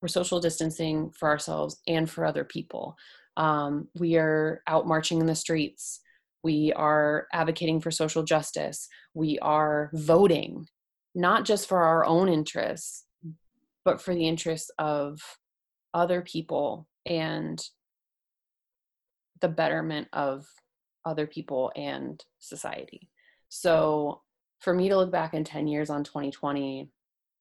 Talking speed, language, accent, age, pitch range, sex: 125 wpm, English, American, 20-39, 150-165 Hz, female